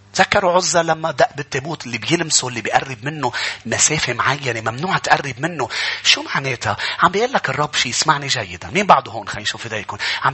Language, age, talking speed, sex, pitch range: English, 30-49, 175 wpm, male, 115-180 Hz